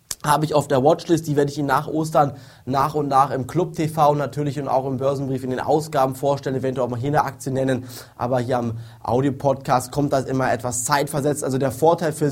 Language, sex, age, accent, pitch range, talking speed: German, male, 20-39, German, 130-155 Hz, 230 wpm